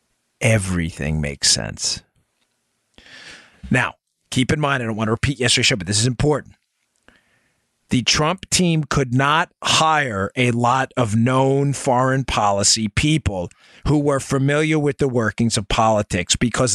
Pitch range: 115-155 Hz